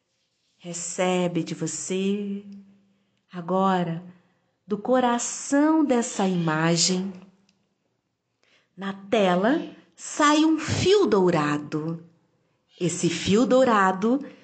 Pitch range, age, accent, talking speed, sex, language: 165-265 Hz, 40-59, Brazilian, 70 wpm, female, Portuguese